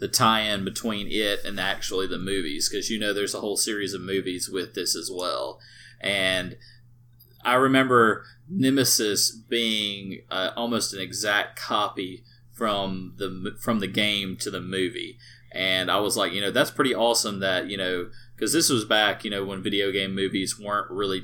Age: 30-49